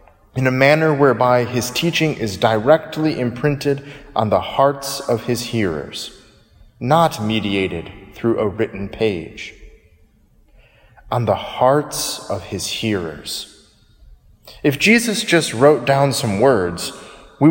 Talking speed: 120 wpm